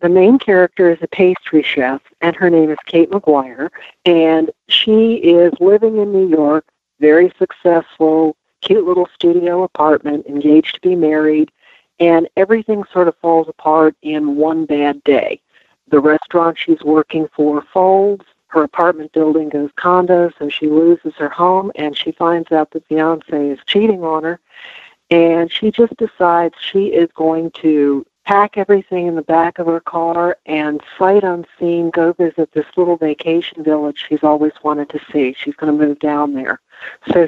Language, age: English, 60-79